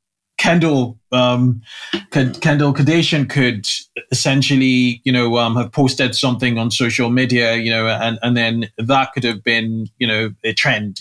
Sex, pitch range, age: male, 115-135 Hz, 20-39